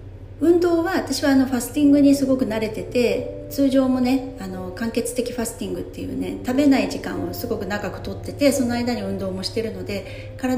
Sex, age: female, 40-59